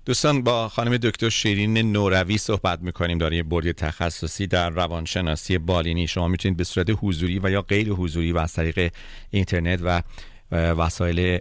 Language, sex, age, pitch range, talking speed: Persian, male, 40-59, 90-105 Hz, 160 wpm